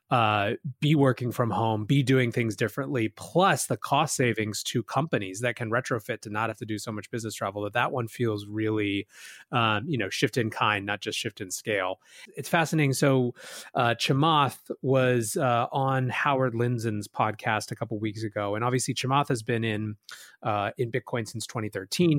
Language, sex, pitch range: English, male, 115-140 Hz